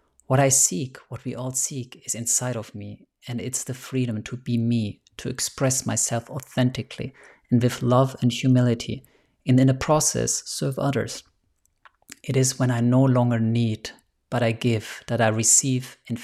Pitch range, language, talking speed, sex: 115-130 Hz, English, 175 wpm, male